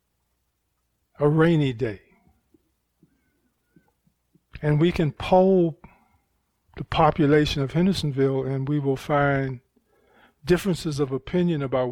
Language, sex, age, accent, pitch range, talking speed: English, male, 50-69, American, 120-155 Hz, 95 wpm